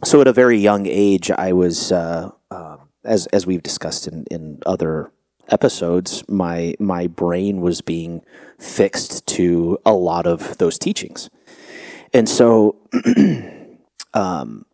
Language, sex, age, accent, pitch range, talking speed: English, male, 30-49, American, 80-95 Hz, 135 wpm